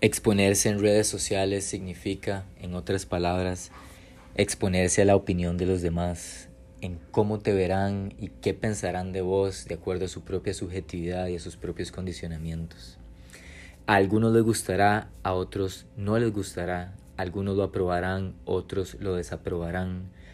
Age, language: 20-39, Spanish